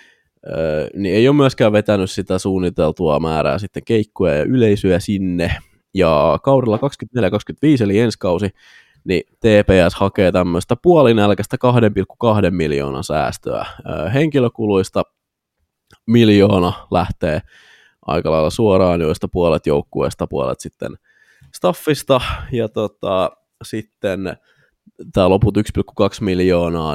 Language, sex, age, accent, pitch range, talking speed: Finnish, male, 20-39, native, 85-110 Hz, 100 wpm